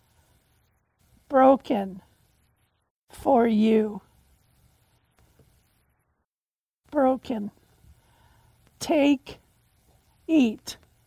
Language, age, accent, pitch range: English, 60-79, American, 215-275 Hz